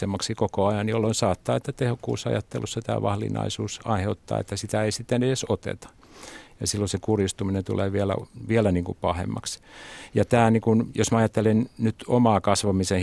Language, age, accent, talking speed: Finnish, 50-69, native, 155 wpm